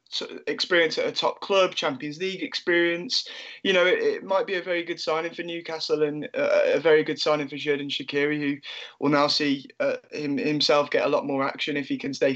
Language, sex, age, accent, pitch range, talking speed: English, male, 20-39, British, 145-185 Hz, 215 wpm